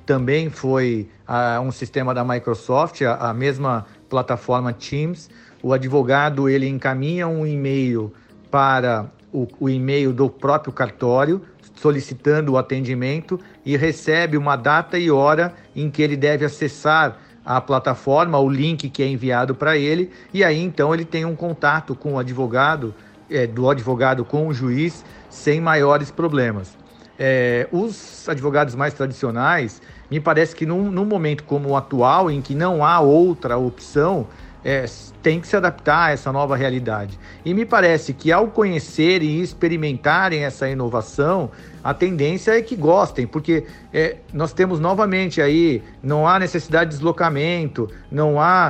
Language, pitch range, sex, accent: Portuguese, 130-160 Hz, male, Brazilian